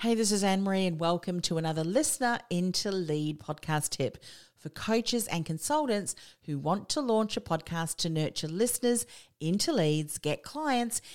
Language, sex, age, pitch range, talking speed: English, female, 40-59, 150-195 Hz, 165 wpm